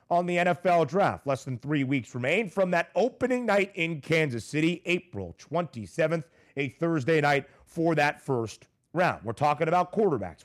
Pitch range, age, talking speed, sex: 135-180 Hz, 30-49, 165 wpm, male